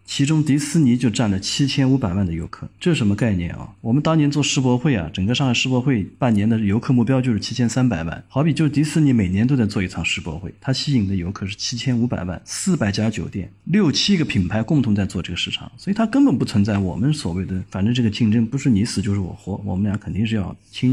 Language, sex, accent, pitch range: Chinese, male, native, 100-140 Hz